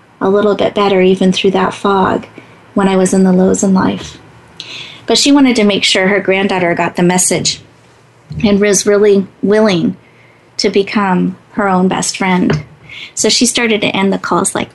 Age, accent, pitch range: 30-49, American, 195-225 Hz